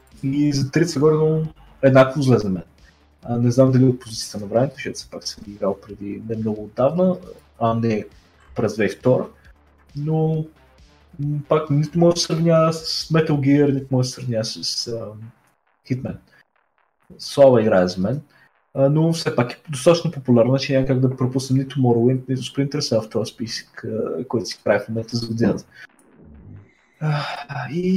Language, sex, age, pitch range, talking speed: Bulgarian, male, 20-39, 115-155 Hz, 160 wpm